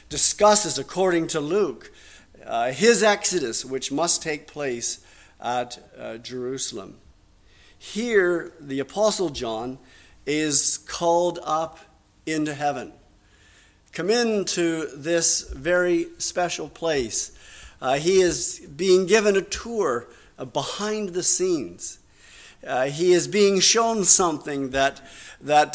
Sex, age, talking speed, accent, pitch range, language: male, 50-69, 110 wpm, American, 140-185 Hz, English